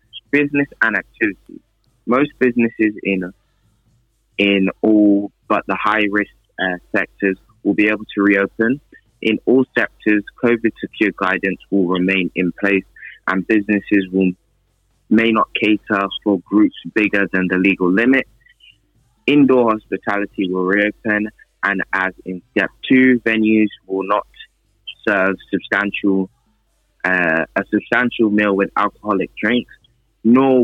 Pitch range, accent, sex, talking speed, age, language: 100-115 Hz, British, male, 125 wpm, 20-39, English